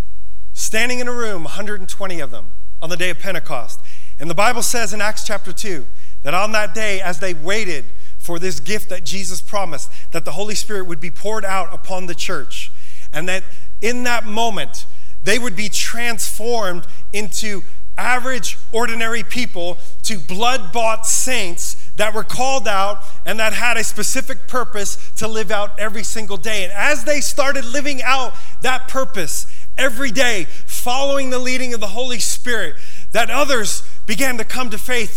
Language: English